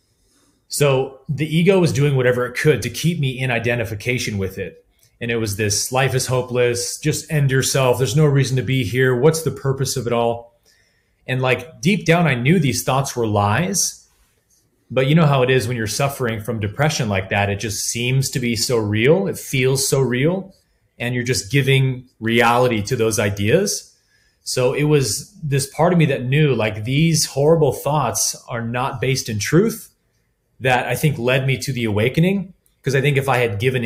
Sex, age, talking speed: male, 30-49, 200 wpm